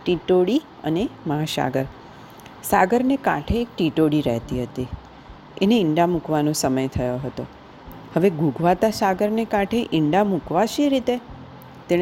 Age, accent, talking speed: 40-59, native, 105 wpm